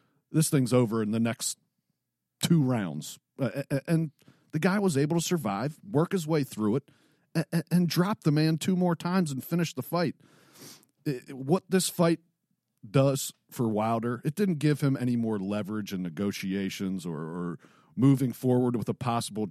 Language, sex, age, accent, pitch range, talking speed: English, male, 40-59, American, 115-155 Hz, 170 wpm